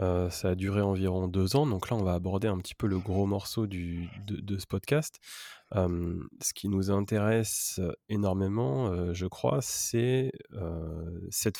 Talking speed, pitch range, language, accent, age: 180 wpm, 95-115 Hz, French, French, 20-39